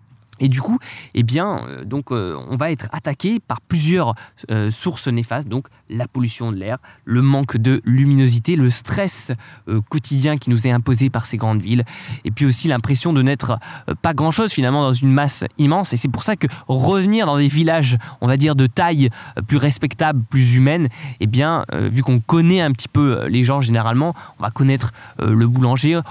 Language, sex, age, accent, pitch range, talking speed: French, male, 20-39, French, 120-150 Hz, 200 wpm